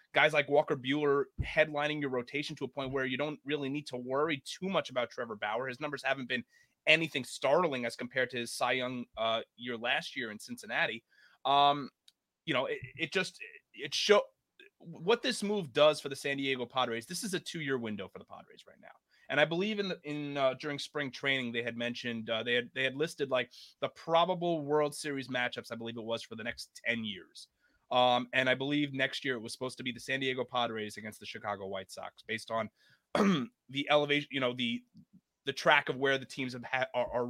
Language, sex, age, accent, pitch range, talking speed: English, male, 30-49, American, 120-155 Hz, 225 wpm